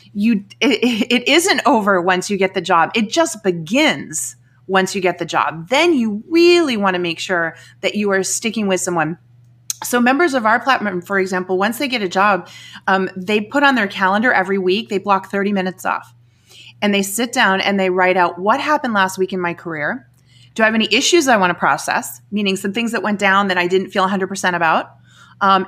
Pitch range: 180-230 Hz